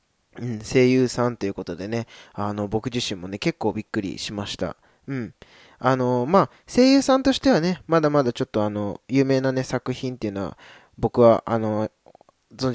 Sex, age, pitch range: male, 20-39, 105-135 Hz